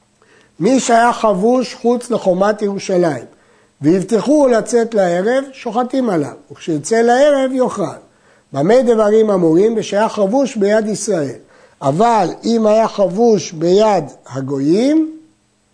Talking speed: 105 wpm